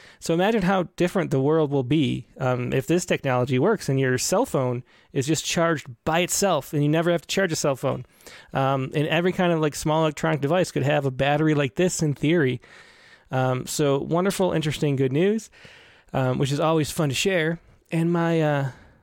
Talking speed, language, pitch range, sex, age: 200 wpm, English, 140-180 Hz, male, 30-49